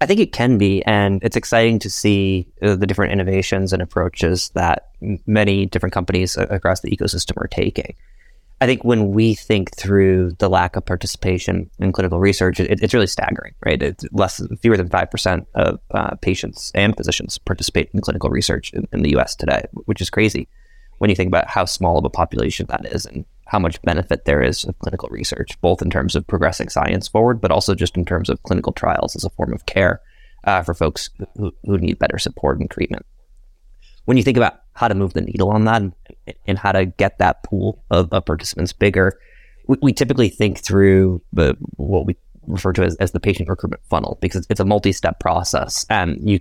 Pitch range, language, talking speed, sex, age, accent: 90-105 Hz, English, 205 wpm, male, 20-39, American